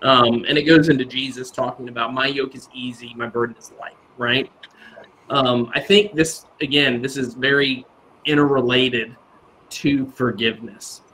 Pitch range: 125-160 Hz